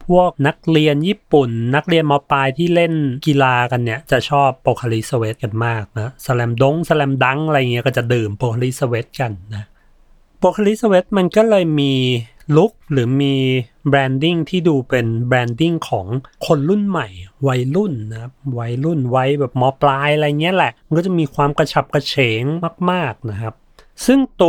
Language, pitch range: Thai, 125-165 Hz